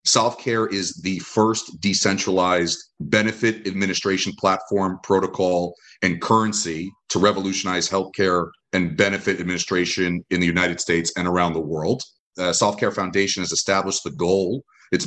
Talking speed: 130 wpm